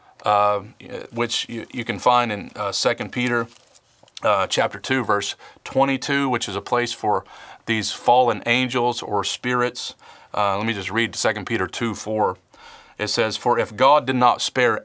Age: 40-59